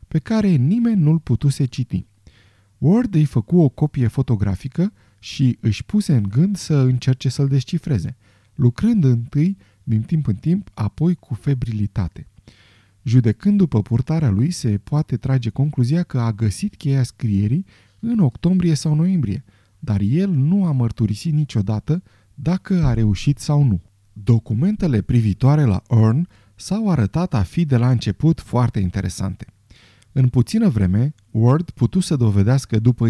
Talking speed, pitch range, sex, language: 145 wpm, 105-155 Hz, male, Romanian